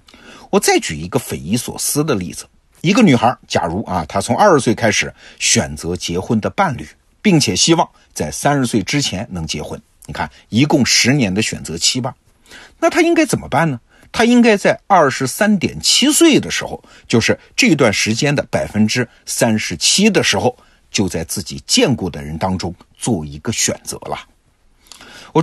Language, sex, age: Chinese, male, 50-69